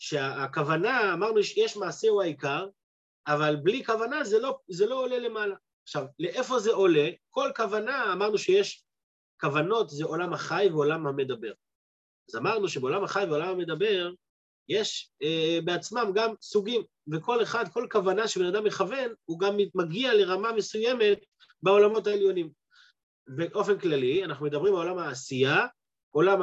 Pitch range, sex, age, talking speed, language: 170-245 Hz, male, 30-49, 140 wpm, Hebrew